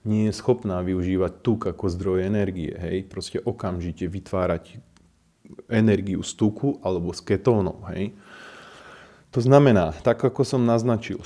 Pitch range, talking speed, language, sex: 95-115 Hz, 135 wpm, Slovak, male